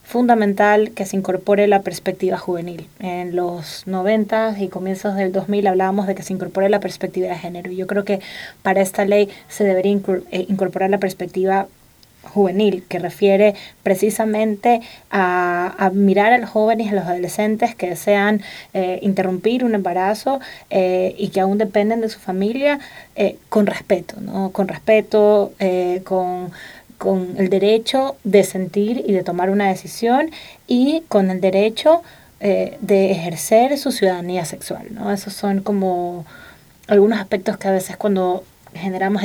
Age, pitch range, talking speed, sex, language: 20-39, 185-210 Hz, 155 wpm, female, Spanish